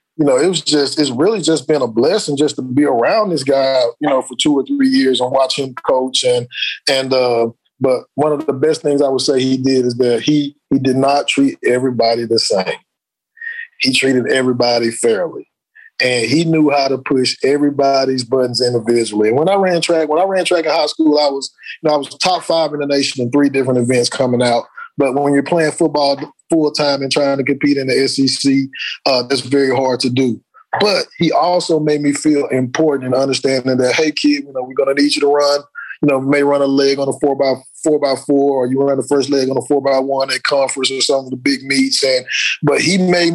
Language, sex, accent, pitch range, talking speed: English, male, American, 130-155 Hz, 240 wpm